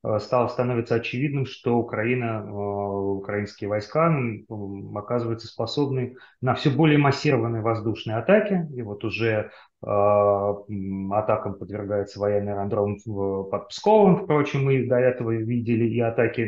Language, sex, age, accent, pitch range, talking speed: Russian, male, 30-49, native, 110-140 Hz, 115 wpm